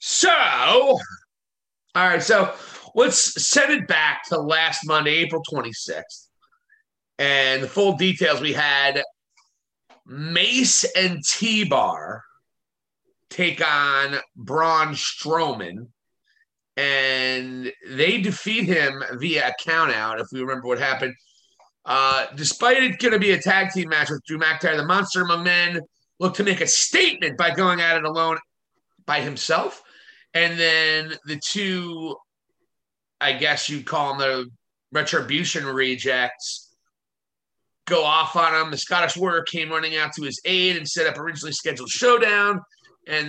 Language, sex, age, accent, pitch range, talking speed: English, male, 30-49, American, 140-185 Hz, 135 wpm